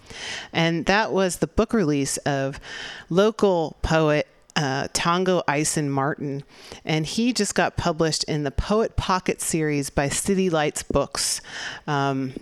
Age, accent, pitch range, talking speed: 30-49, American, 155-190 Hz, 135 wpm